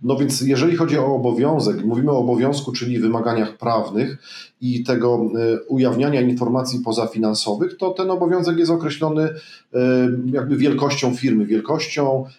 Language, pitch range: Polish, 115-135 Hz